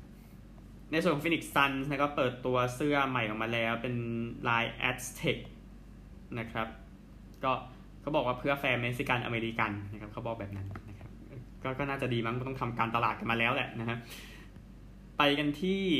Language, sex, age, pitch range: Thai, male, 20-39, 115-140 Hz